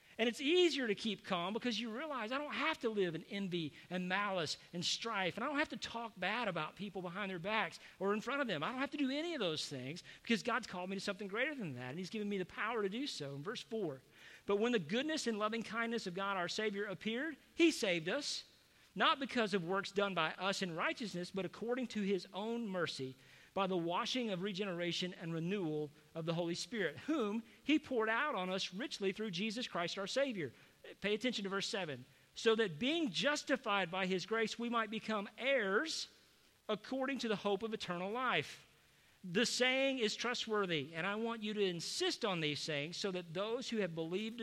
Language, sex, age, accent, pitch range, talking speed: English, male, 50-69, American, 180-230 Hz, 220 wpm